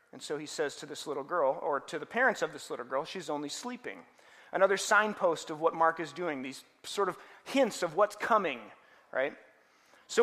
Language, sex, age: English, male, 30-49